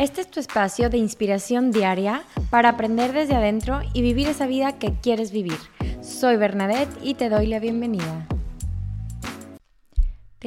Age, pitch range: 20-39, 200-235 Hz